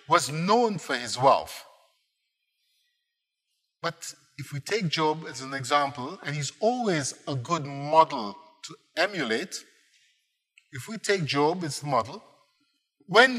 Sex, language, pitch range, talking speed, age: male, English, 145-240 Hz, 130 wpm, 50-69